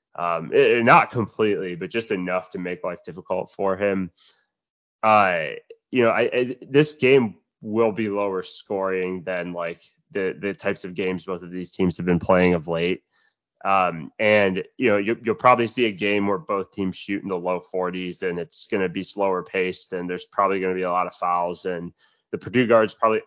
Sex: male